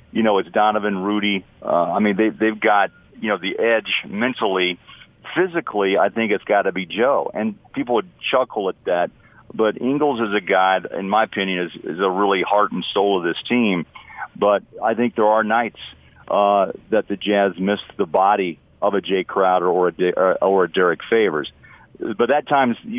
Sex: male